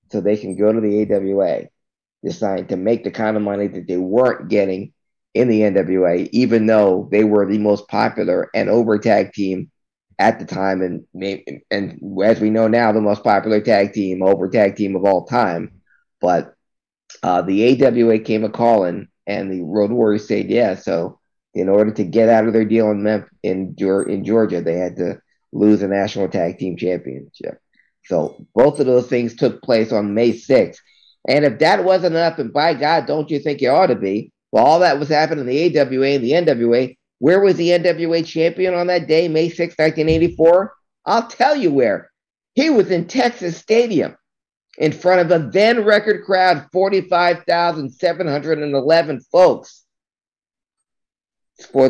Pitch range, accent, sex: 105-160 Hz, American, male